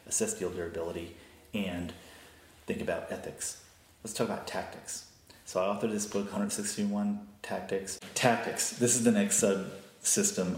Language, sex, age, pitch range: English, male, 30-49, 90-115 Hz